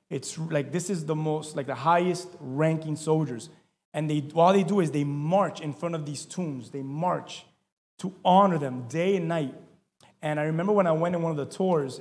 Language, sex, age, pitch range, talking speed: English, male, 30-49, 150-185 Hz, 215 wpm